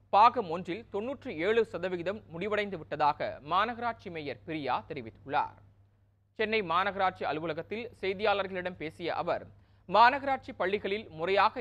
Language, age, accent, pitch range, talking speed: Tamil, 30-49, native, 165-225 Hz, 105 wpm